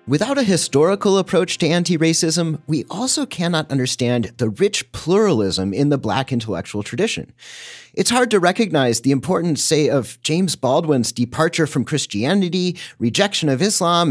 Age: 30-49